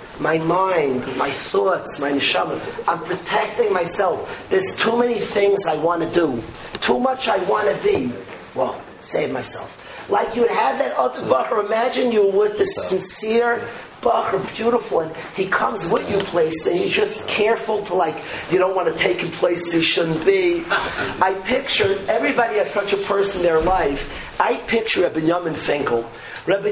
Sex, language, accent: male, English, American